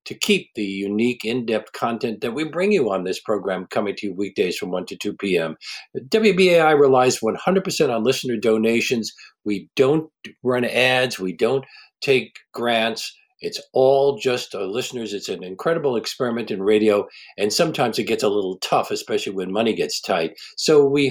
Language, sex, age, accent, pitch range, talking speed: English, male, 60-79, American, 110-170 Hz, 175 wpm